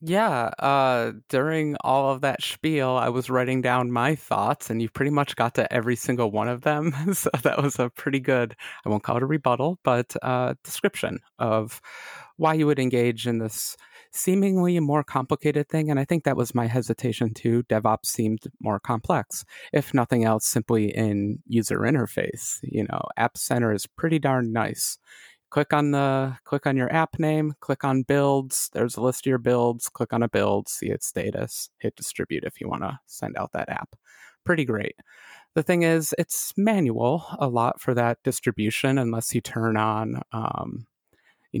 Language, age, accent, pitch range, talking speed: English, 30-49, American, 115-150 Hz, 185 wpm